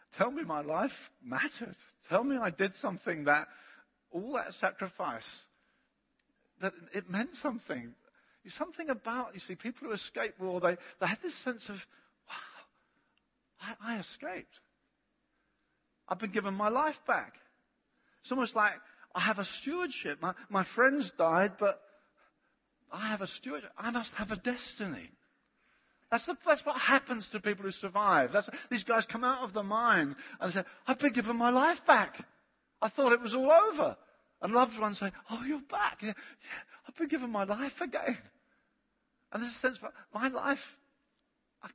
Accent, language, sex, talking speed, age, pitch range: British, English, male, 165 wpm, 50-69, 200-275 Hz